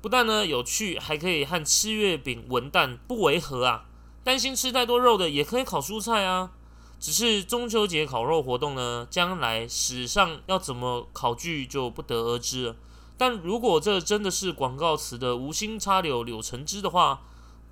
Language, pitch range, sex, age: Chinese, 125-190 Hz, male, 20-39